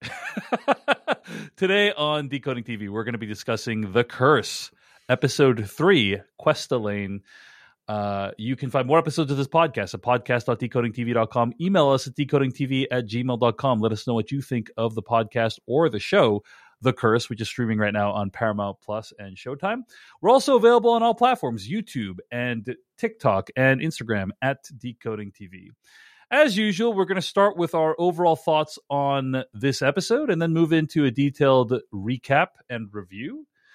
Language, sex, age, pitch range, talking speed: English, male, 30-49, 120-165 Hz, 165 wpm